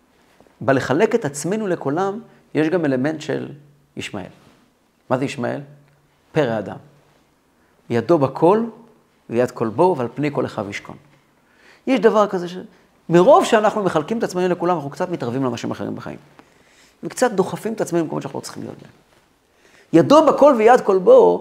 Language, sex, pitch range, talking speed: Hebrew, male, 155-250 Hz, 150 wpm